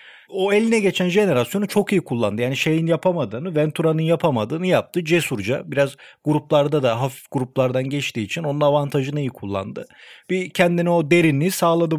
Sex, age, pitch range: male, 40-59, 130-170 Hz